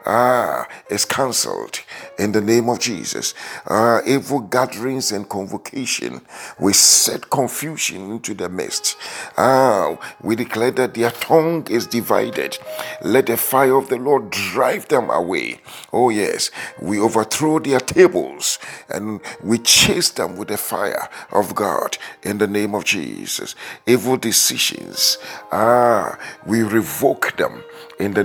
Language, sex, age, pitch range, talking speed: English, male, 50-69, 110-140 Hz, 135 wpm